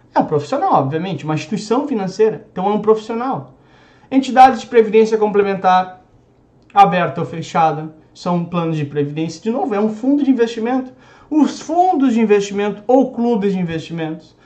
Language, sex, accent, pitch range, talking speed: Portuguese, male, Brazilian, 155-230 Hz, 155 wpm